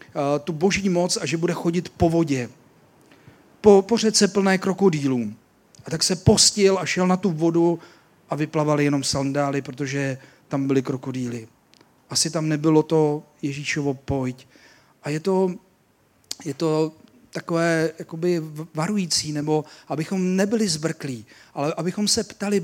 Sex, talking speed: male, 140 wpm